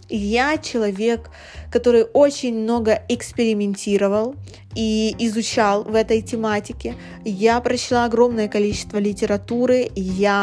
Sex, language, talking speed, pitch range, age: female, Russian, 100 wpm, 205-235 Hz, 20-39